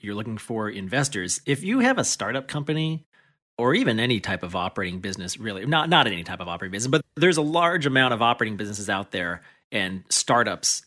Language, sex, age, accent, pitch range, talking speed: English, male, 30-49, American, 100-130 Hz, 205 wpm